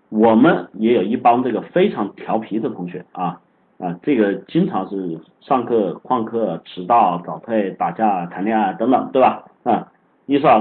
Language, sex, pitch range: Chinese, male, 100-135 Hz